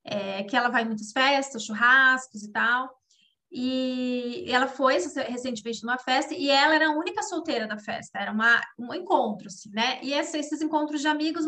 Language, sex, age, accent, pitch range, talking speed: Portuguese, female, 20-39, Brazilian, 230-295 Hz, 175 wpm